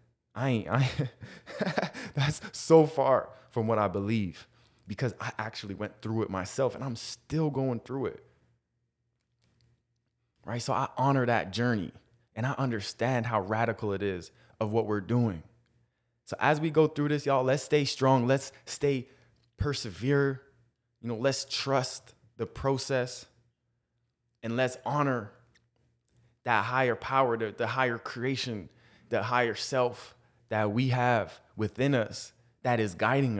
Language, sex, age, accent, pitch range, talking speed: English, male, 20-39, American, 115-140 Hz, 145 wpm